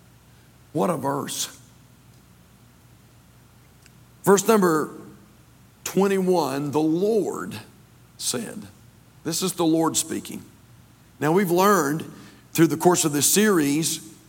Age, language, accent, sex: 50-69, English, American, male